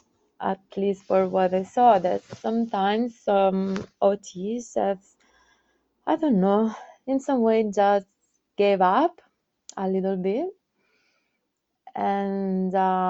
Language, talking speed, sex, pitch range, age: English, 115 wpm, female, 185-220 Hz, 20-39